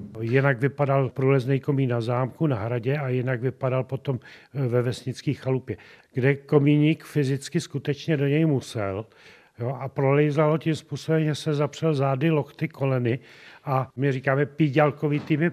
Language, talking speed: Czech, 145 wpm